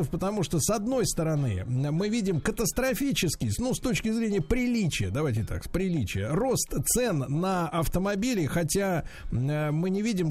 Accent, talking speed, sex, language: native, 140 wpm, male, Russian